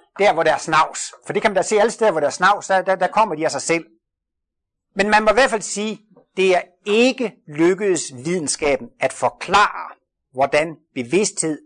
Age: 60-79